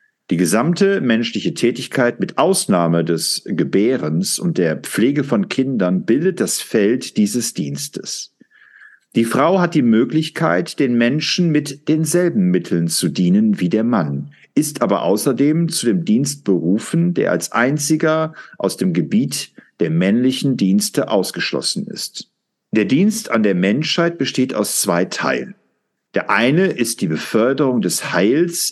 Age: 50-69